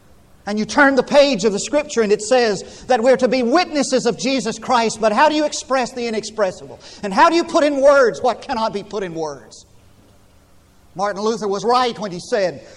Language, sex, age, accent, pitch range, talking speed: English, male, 50-69, American, 190-255 Hz, 215 wpm